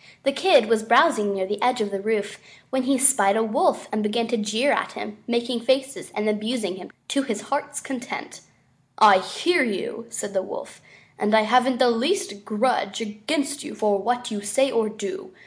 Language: Korean